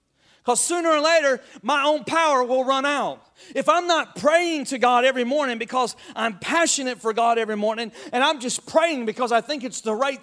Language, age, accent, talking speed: English, 40-59, American, 205 wpm